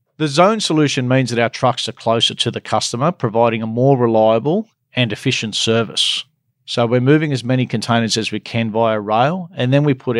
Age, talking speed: 40-59, 200 wpm